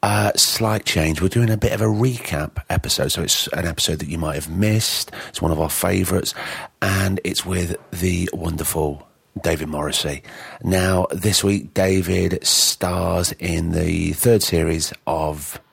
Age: 40-59